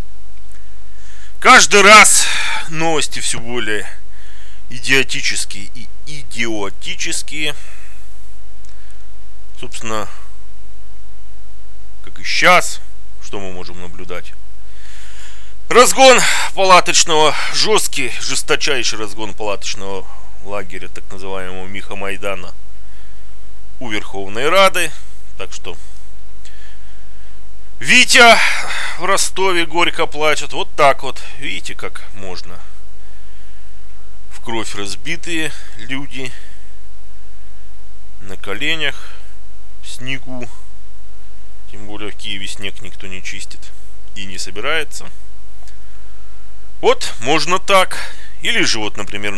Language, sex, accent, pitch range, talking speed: Russian, male, native, 75-115 Hz, 85 wpm